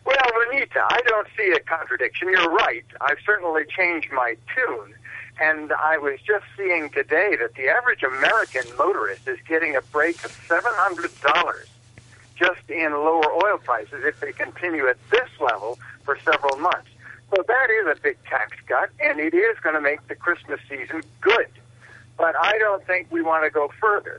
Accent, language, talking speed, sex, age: American, English, 180 wpm, male, 60-79